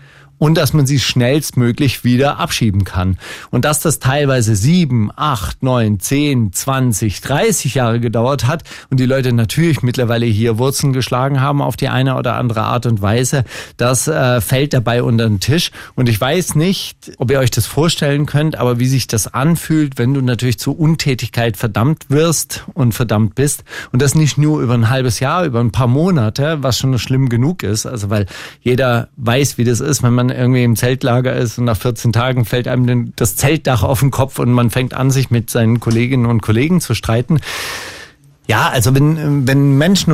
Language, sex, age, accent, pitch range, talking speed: German, male, 40-59, German, 115-140 Hz, 190 wpm